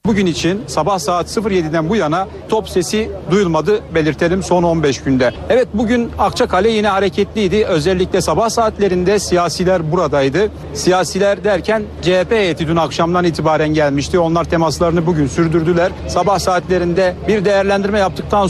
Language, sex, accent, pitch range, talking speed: Turkish, male, native, 165-200 Hz, 135 wpm